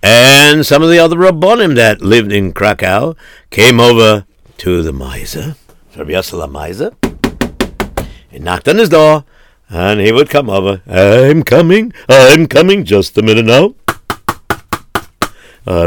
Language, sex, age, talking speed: English, male, 60-79, 130 wpm